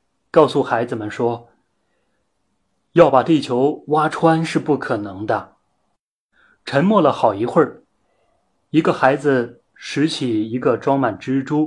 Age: 30-49